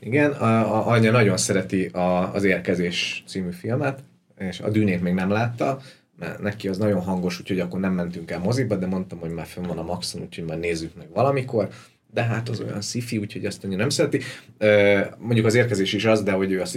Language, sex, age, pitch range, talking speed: Hungarian, male, 30-49, 95-110 Hz, 220 wpm